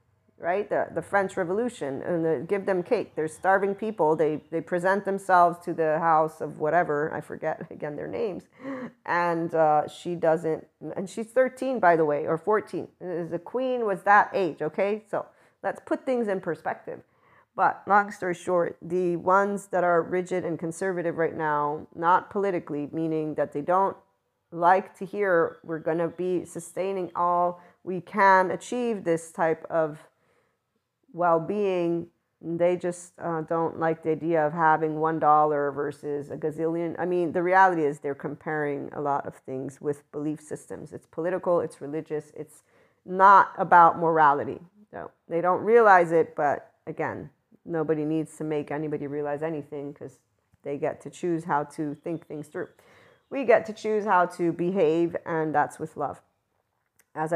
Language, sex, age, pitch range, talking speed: English, female, 40-59, 155-185 Hz, 165 wpm